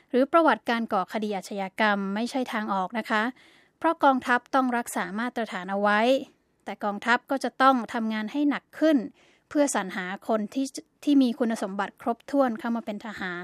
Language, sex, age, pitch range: Thai, female, 20-39, 215-270 Hz